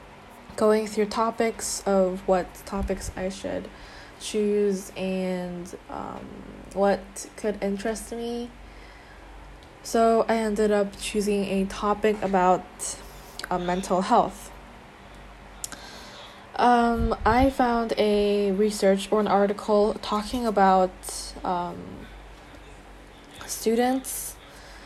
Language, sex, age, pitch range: Korean, female, 10-29, 190-215 Hz